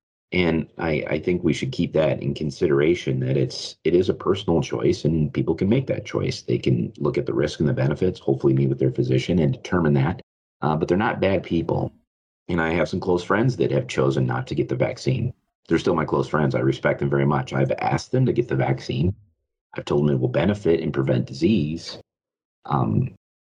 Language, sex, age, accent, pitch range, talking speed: English, male, 40-59, American, 70-95 Hz, 220 wpm